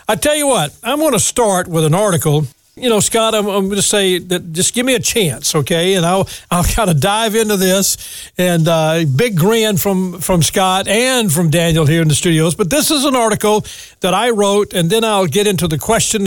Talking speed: 230 wpm